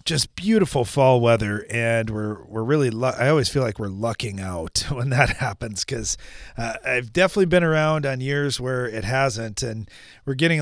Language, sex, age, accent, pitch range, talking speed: English, male, 40-59, American, 105-135 Hz, 180 wpm